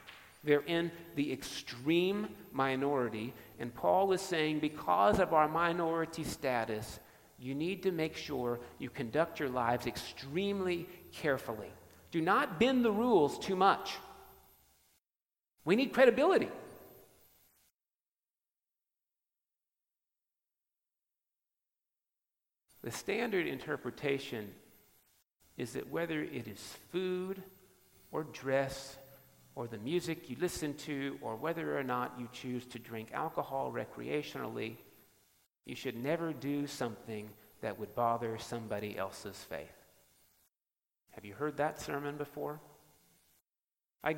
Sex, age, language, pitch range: male, 50-69, English, 120-165 Hz